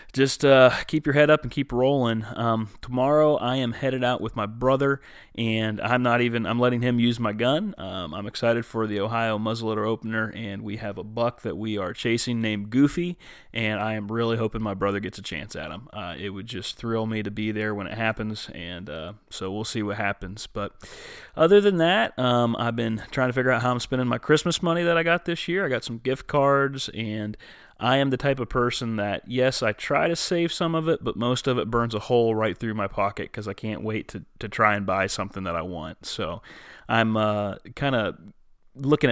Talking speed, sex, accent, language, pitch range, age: 230 wpm, male, American, English, 105-130 Hz, 30-49